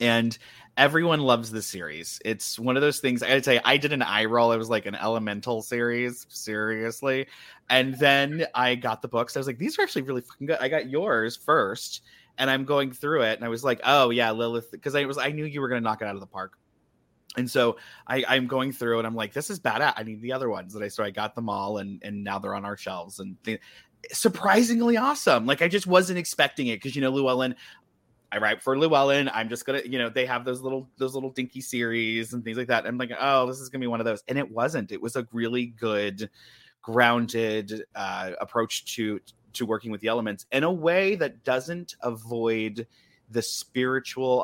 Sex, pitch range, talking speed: male, 110-135 Hz, 235 wpm